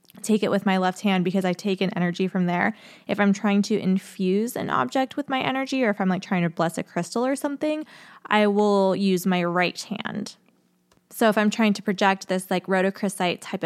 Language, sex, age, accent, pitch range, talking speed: English, female, 20-39, American, 185-235 Hz, 220 wpm